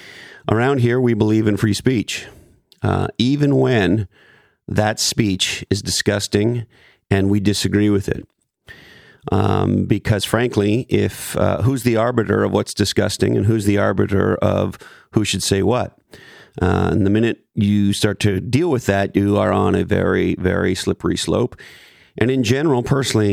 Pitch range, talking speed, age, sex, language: 95-110 Hz, 155 wpm, 40-59, male, English